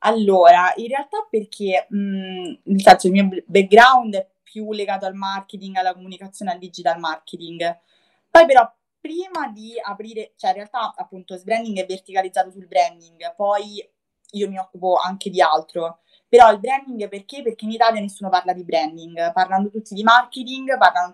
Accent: native